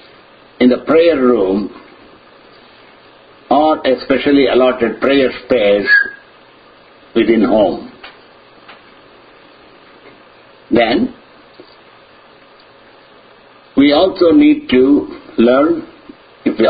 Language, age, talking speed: English, 50-69, 70 wpm